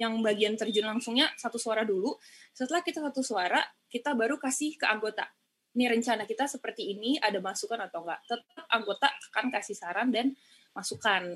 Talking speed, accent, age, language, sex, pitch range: 170 wpm, native, 20-39, Indonesian, female, 200-255 Hz